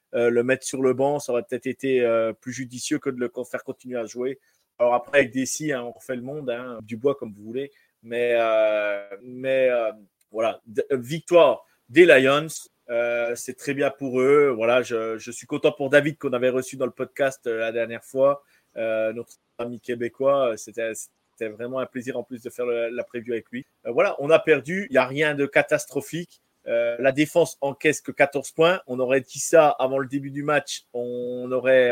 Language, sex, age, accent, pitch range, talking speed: French, male, 30-49, French, 120-150 Hz, 215 wpm